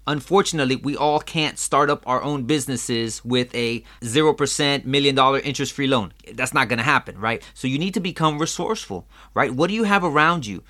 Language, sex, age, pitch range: English, male, 30-49, 120-170 Hz